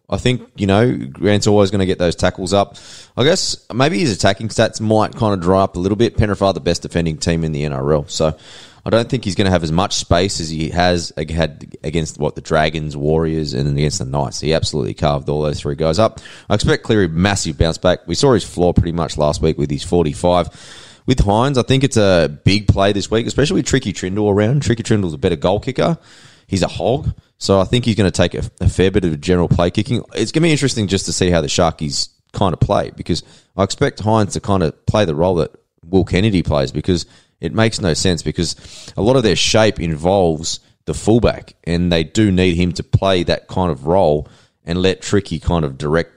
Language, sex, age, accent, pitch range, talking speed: English, male, 20-39, Australian, 80-110 Hz, 235 wpm